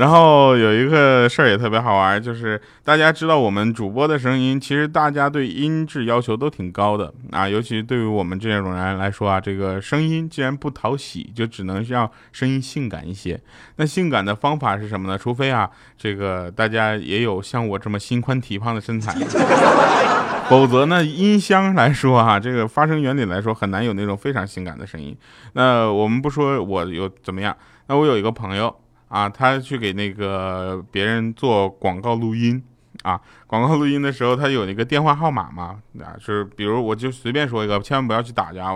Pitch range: 105-150 Hz